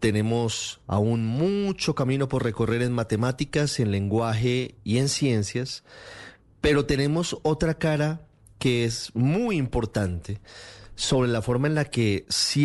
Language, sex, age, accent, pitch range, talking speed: Spanish, male, 30-49, Colombian, 105-130 Hz, 135 wpm